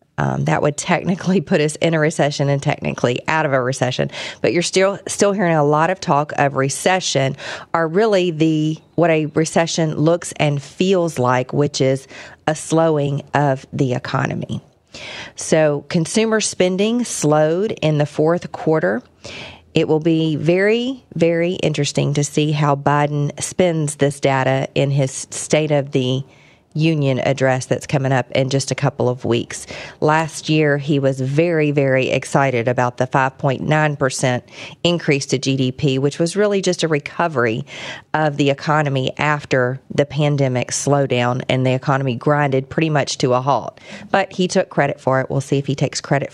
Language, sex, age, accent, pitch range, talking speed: English, female, 40-59, American, 135-170 Hz, 165 wpm